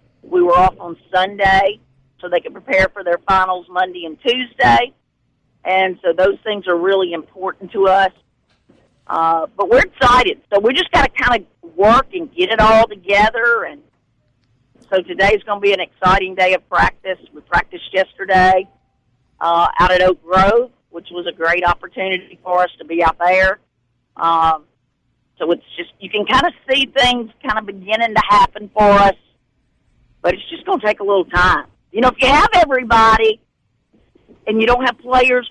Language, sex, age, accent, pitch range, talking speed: English, female, 50-69, American, 185-240 Hz, 185 wpm